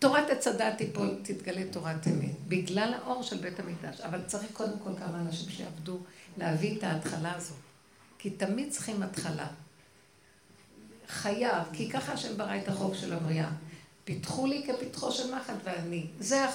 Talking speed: 150 wpm